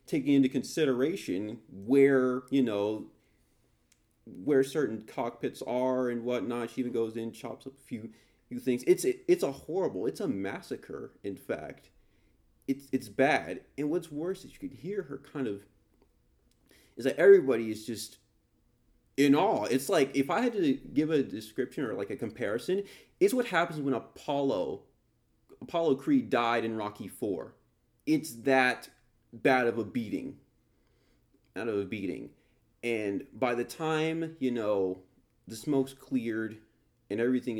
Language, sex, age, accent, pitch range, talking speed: English, male, 30-49, American, 110-140 Hz, 155 wpm